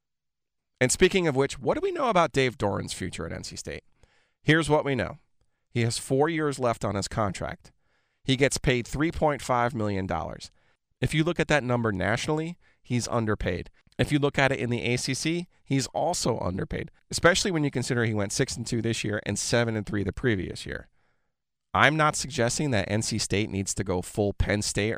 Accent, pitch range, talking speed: American, 105-140 Hz, 195 wpm